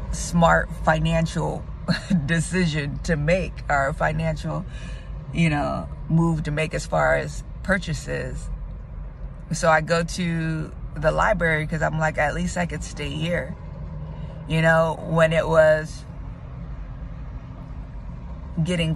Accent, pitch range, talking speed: American, 125-160 Hz, 115 wpm